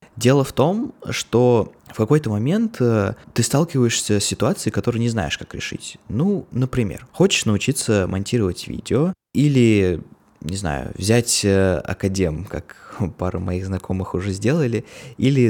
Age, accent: 20-39, native